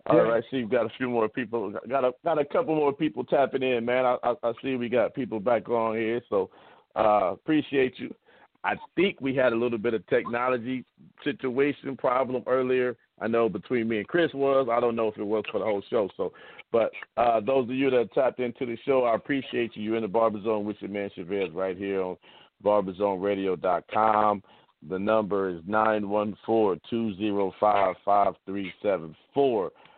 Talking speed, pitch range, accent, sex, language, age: 195 wpm, 110-140 Hz, American, male, English, 50-69